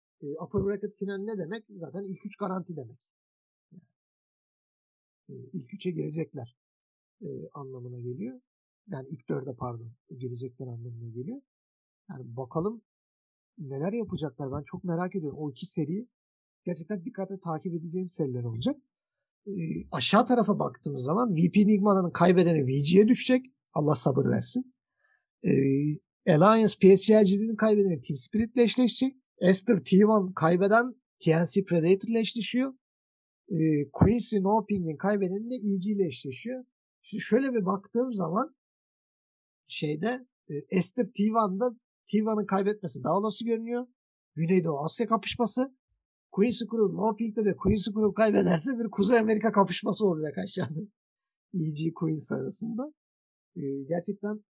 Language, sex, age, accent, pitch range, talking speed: Turkish, male, 50-69, native, 160-225 Hz, 120 wpm